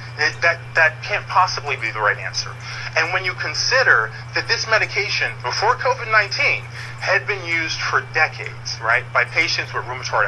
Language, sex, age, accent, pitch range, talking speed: English, male, 30-49, American, 120-140 Hz, 160 wpm